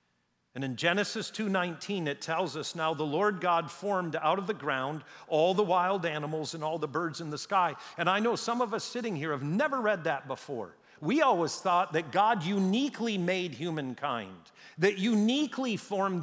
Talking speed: 190 wpm